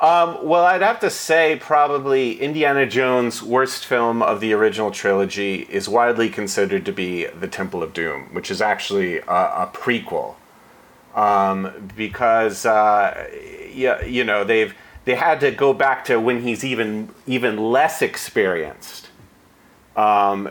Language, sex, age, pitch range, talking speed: English, male, 30-49, 105-130 Hz, 145 wpm